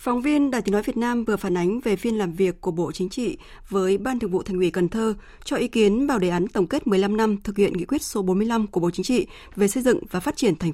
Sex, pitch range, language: female, 185-235 Hz, Vietnamese